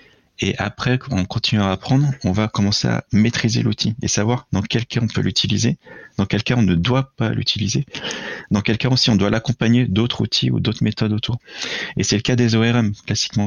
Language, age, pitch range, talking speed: French, 30-49, 95-120 Hz, 215 wpm